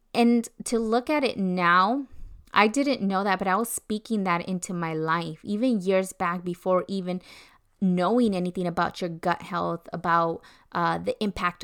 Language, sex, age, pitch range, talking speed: English, female, 20-39, 175-210 Hz, 170 wpm